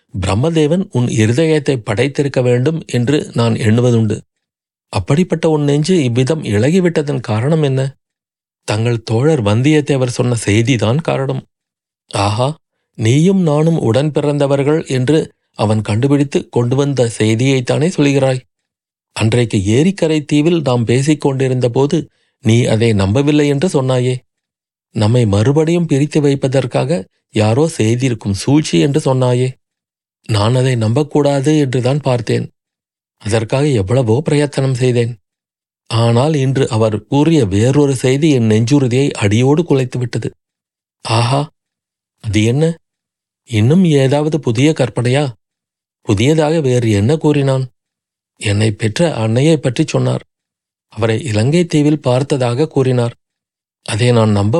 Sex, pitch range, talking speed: male, 115-150 Hz, 105 wpm